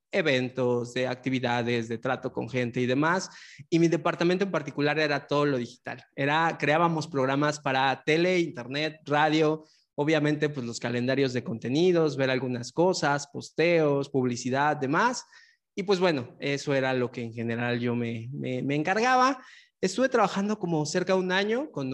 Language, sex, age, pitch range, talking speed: Spanish, male, 20-39, 130-175 Hz, 160 wpm